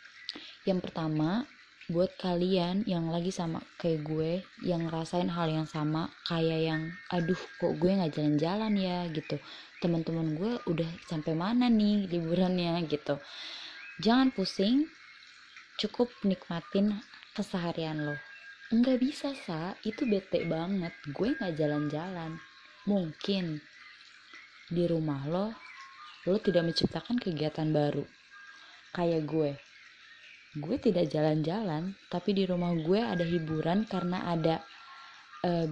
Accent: native